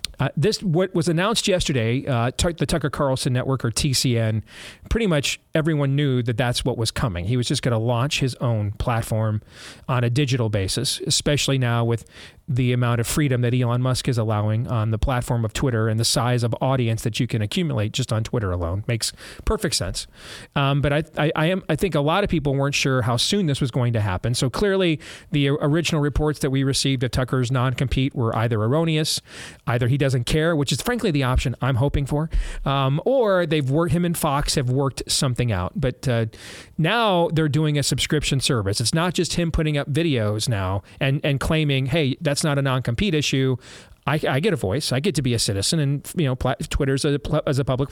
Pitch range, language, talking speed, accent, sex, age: 120-155 Hz, English, 215 wpm, American, male, 40-59